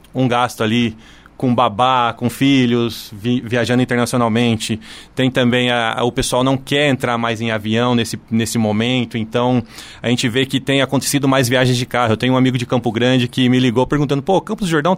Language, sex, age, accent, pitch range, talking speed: Portuguese, male, 20-39, Brazilian, 120-150 Hz, 205 wpm